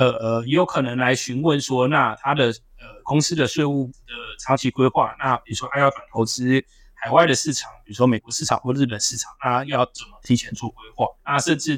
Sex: male